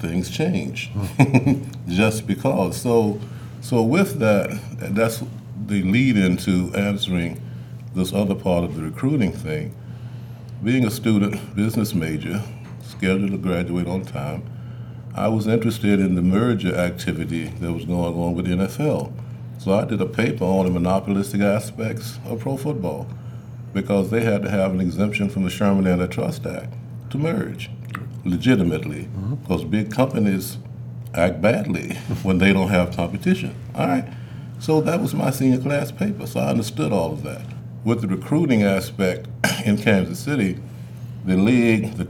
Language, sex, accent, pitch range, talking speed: English, male, American, 90-120 Hz, 150 wpm